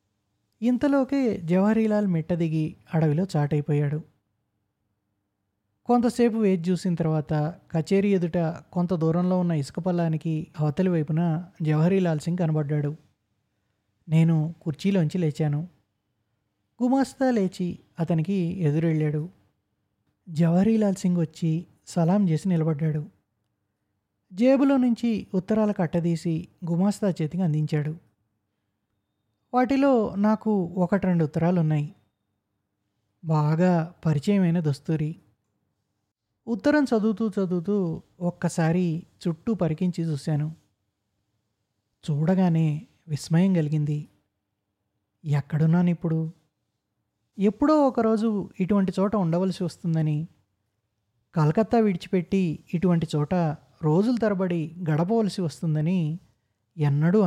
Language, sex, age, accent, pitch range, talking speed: Telugu, male, 20-39, native, 145-185 Hz, 80 wpm